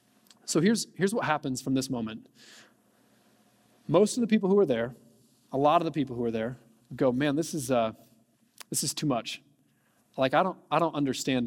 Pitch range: 145-215 Hz